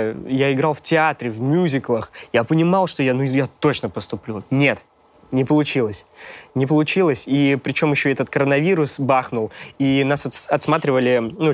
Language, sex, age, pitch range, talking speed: Russian, male, 20-39, 125-150 Hz, 150 wpm